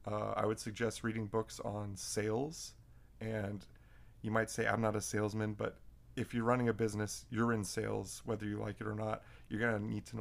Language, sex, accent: English, male, American